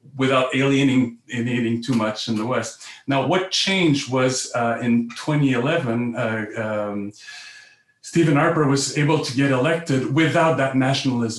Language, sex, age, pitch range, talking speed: English, male, 40-59, 120-140 Hz, 130 wpm